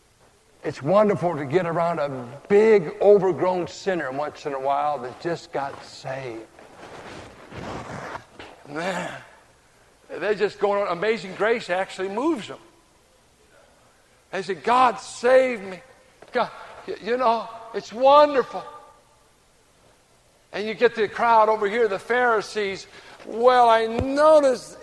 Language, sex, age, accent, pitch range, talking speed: English, male, 60-79, American, 170-235 Hz, 120 wpm